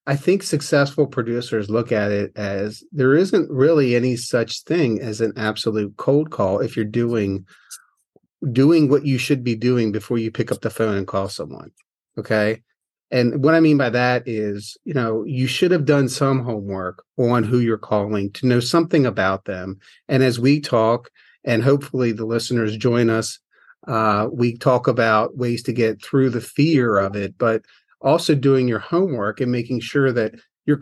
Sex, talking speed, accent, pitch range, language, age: male, 185 wpm, American, 110-140 Hz, English, 40-59